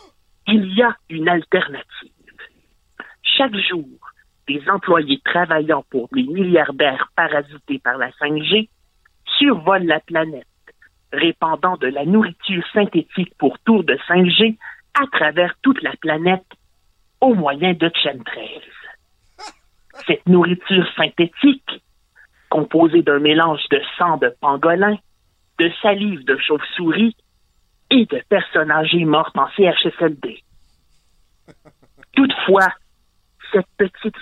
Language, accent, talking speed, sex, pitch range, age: French, French, 110 wpm, male, 155-205 Hz, 50-69